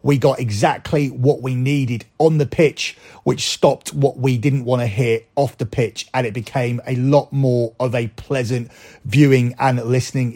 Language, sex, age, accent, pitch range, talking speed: English, male, 30-49, British, 125-150 Hz, 185 wpm